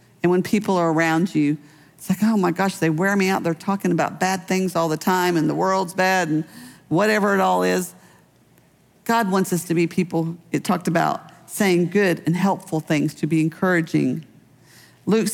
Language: English